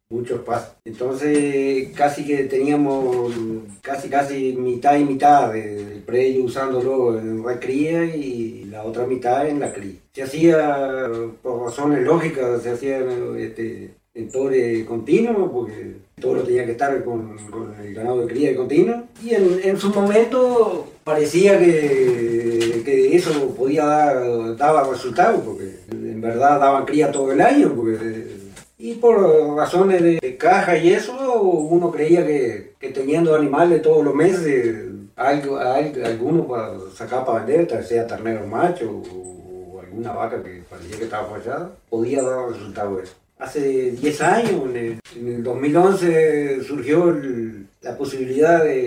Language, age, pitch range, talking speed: Spanish, 40-59, 115-155 Hz, 155 wpm